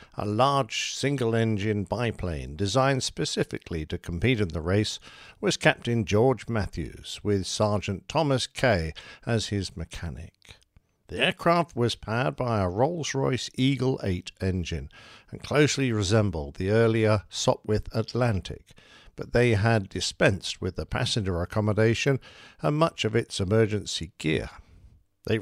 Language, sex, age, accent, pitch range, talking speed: English, male, 50-69, British, 95-135 Hz, 125 wpm